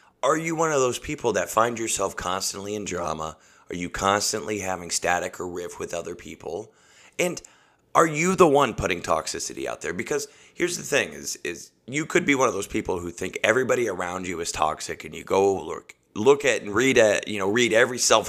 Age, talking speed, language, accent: 30-49, 215 wpm, English, American